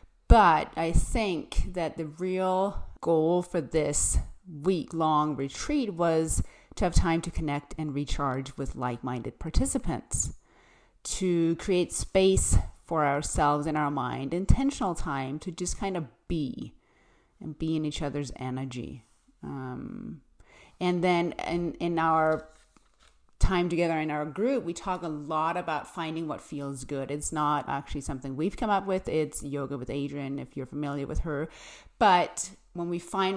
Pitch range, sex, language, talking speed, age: 140-175 Hz, female, English, 150 wpm, 30-49